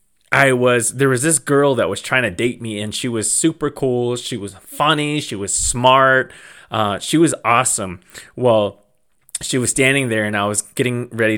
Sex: male